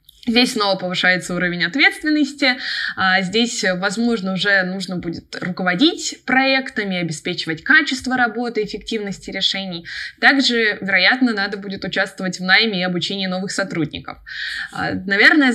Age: 20-39